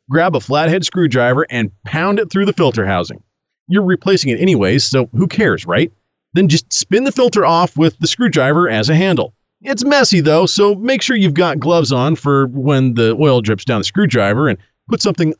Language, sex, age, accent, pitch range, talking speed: English, male, 40-59, American, 125-180 Hz, 205 wpm